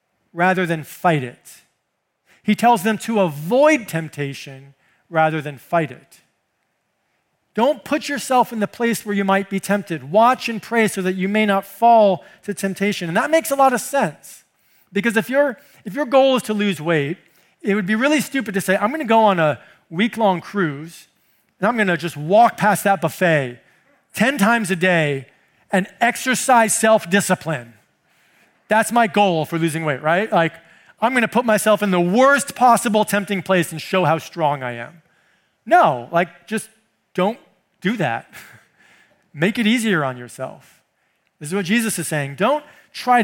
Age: 40-59